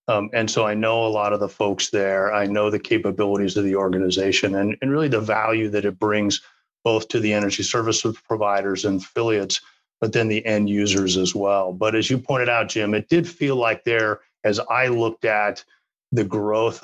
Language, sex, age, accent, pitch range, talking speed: English, male, 40-59, American, 100-110 Hz, 205 wpm